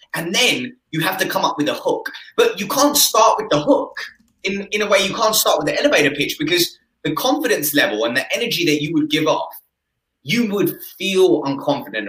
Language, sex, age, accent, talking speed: English, male, 20-39, British, 220 wpm